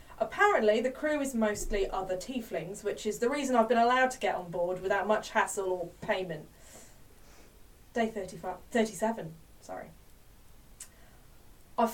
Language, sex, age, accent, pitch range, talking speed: English, female, 20-39, British, 200-265 Hz, 140 wpm